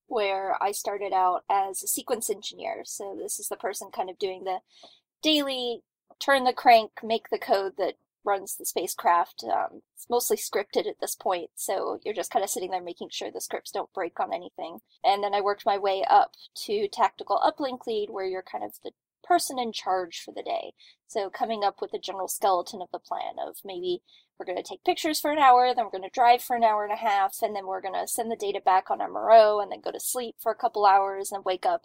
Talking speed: 235 wpm